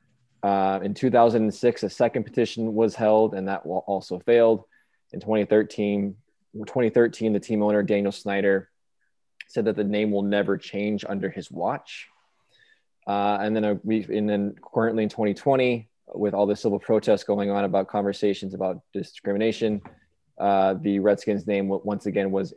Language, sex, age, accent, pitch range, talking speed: English, male, 20-39, American, 100-110 Hz, 150 wpm